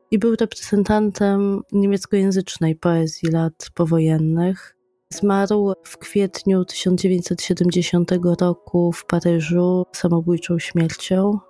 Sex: female